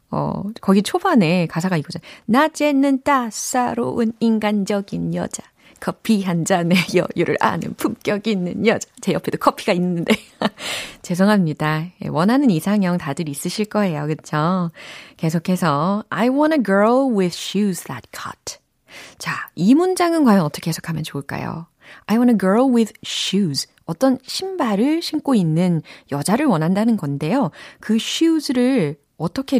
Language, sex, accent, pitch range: Korean, female, native, 165-235 Hz